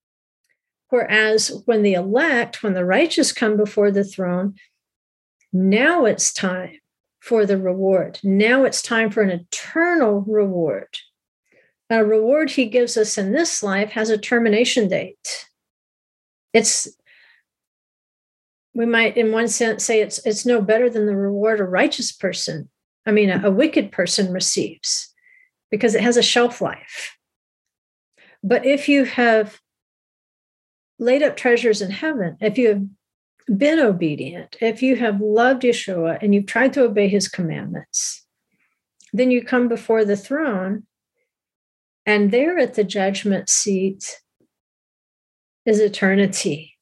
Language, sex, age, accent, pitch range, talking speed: English, female, 50-69, American, 200-245 Hz, 135 wpm